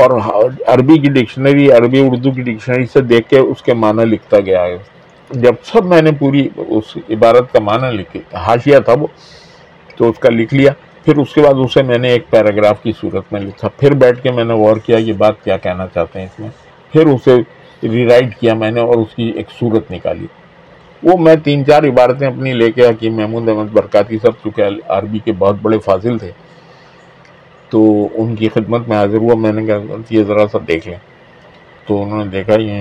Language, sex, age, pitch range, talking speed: Urdu, male, 50-69, 105-135 Hz, 215 wpm